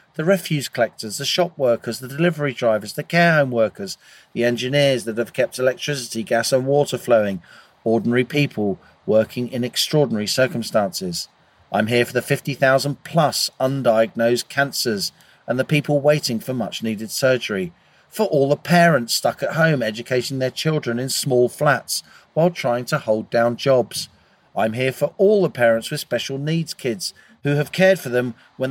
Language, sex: English, male